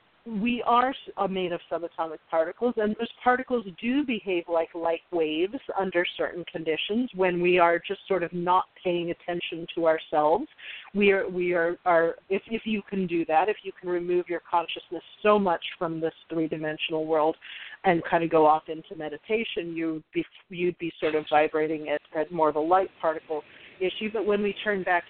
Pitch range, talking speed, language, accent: 170-215 Hz, 190 wpm, English, American